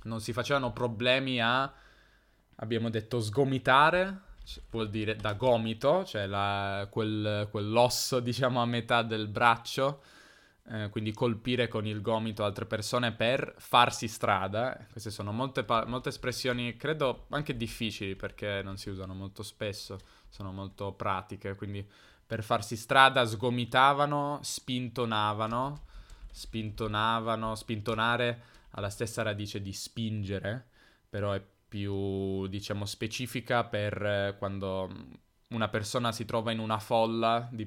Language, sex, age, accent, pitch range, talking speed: Italian, male, 20-39, native, 100-120 Hz, 120 wpm